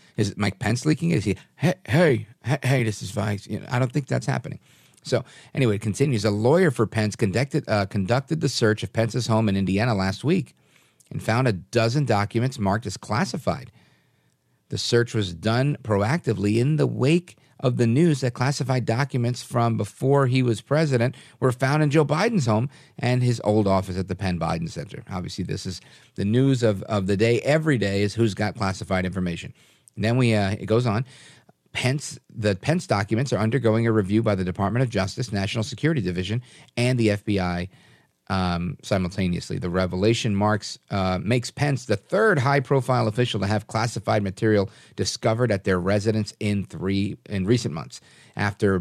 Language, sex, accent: English, male, American